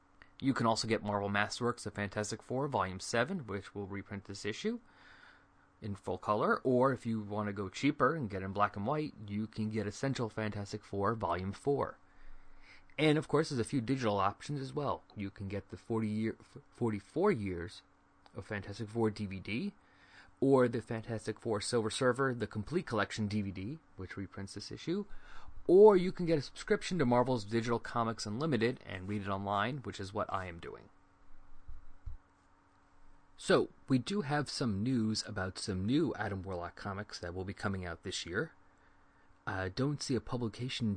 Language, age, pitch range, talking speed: English, 30-49, 95-120 Hz, 175 wpm